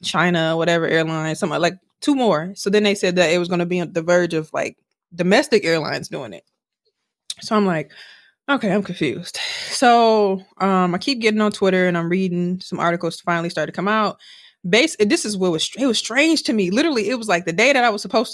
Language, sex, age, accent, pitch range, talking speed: English, female, 20-39, American, 170-220 Hz, 225 wpm